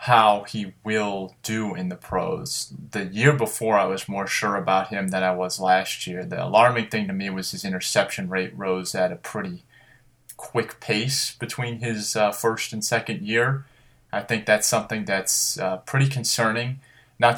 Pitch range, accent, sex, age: 95-120 Hz, American, male, 20-39